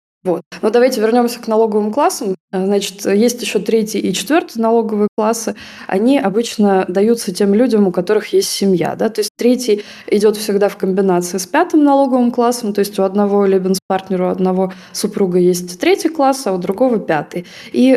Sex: female